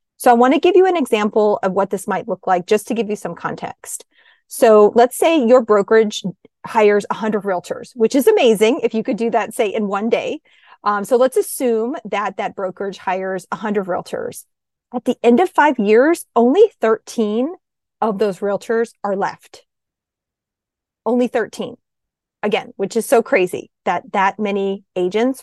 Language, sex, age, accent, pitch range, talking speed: English, female, 30-49, American, 205-250 Hz, 175 wpm